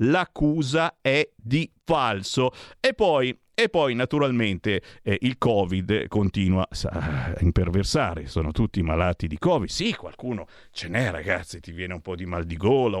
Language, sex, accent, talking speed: Italian, male, native, 150 wpm